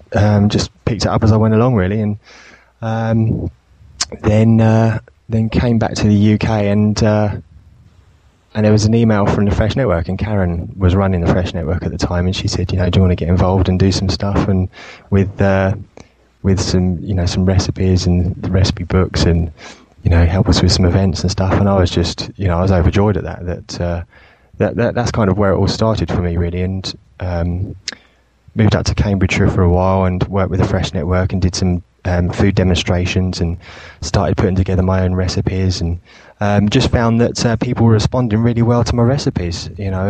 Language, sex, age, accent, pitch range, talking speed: English, male, 20-39, British, 90-105 Hz, 220 wpm